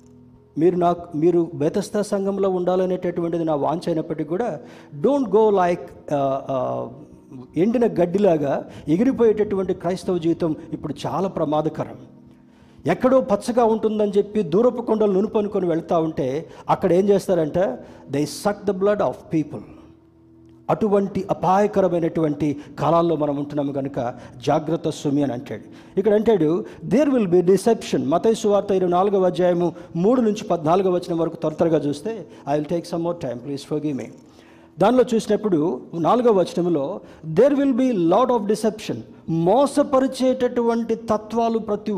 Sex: male